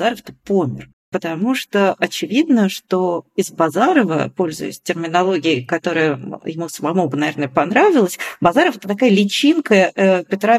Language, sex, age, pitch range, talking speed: Russian, female, 40-59, 160-200 Hz, 120 wpm